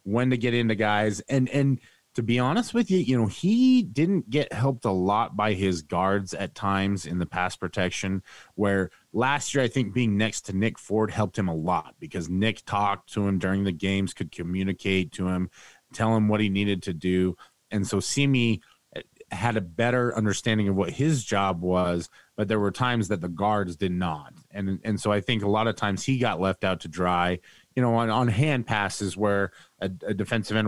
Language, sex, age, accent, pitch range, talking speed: English, male, 30-49, American, 95-120 Hz, 215 wpm